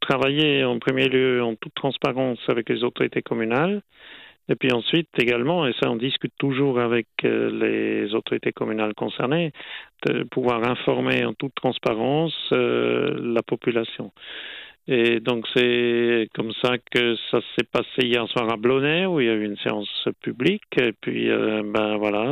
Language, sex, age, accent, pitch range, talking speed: French, male, 50-69, French, 115-140 Hz, 165 wpm